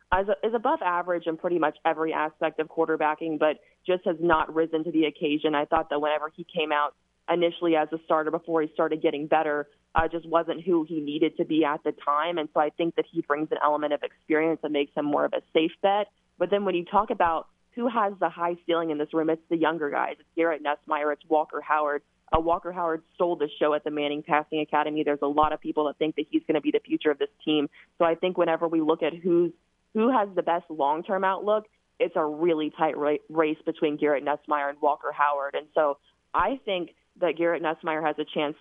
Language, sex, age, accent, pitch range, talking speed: English, female, 20-39, American, 150-175 Hz, 240 wpm